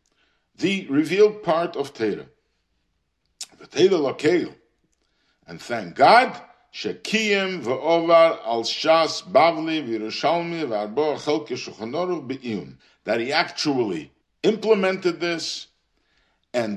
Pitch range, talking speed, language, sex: 135-200 Hz, 60 wpm, English, male